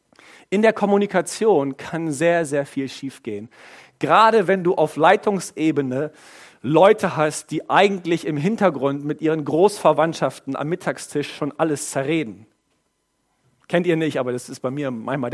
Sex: male